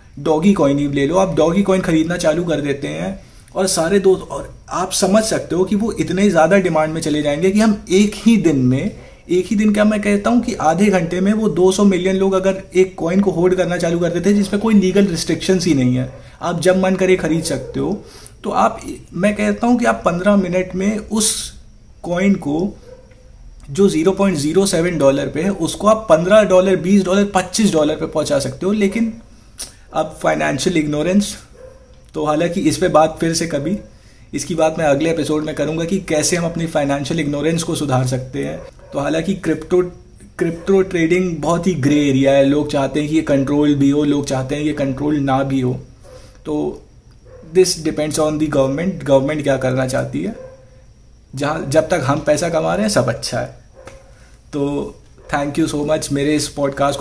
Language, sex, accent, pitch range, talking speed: Hindi, male, native, 145-190 Hz, 200 wpm